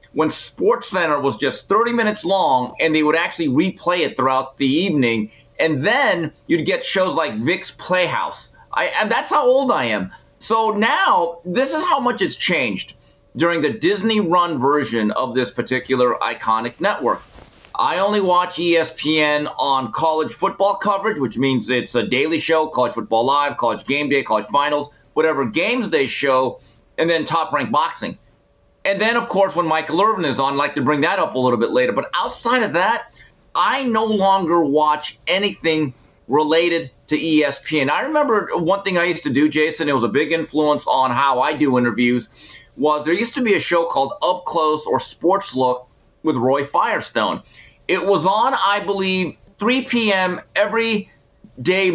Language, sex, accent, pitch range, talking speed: English, male, American, 140-195 Hz, 180 wpm